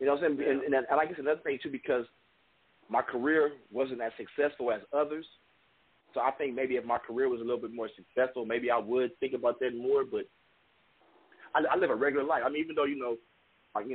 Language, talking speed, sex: English, 230 wpm, male